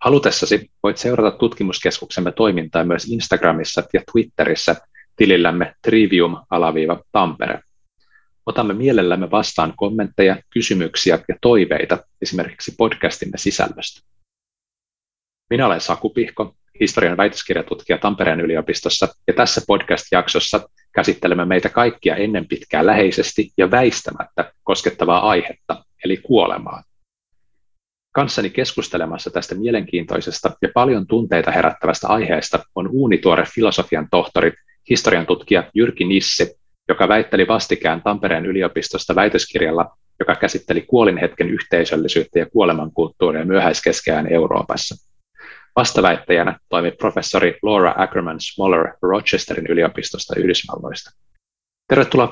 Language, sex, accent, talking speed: Finnish, male, native, 100 wpm